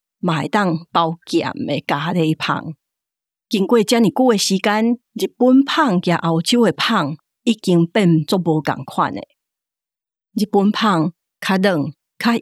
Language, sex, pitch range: Chinese, female, 165-215 Hz